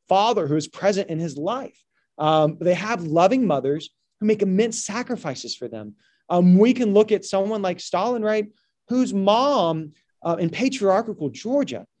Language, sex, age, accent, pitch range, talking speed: English, male, 30-49, American, 180-265 Hz, 165 wpm